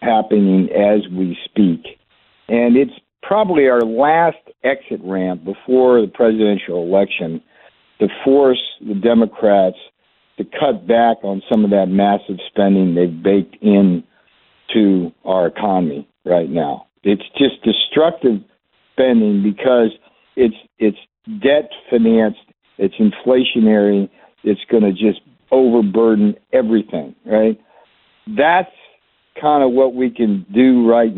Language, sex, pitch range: English, male, 105-135 Hz